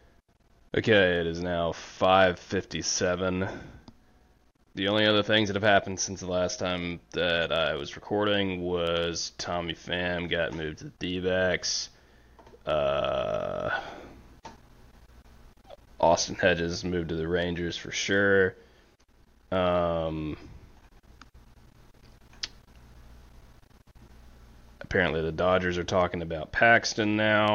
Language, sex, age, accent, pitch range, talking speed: English, male, 20-39, American, 85-105 Hz, 100 wpm